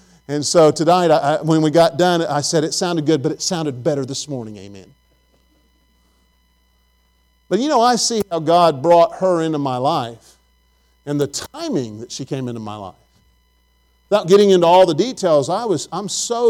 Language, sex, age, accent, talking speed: English, male, 50-69, American, 185 wpm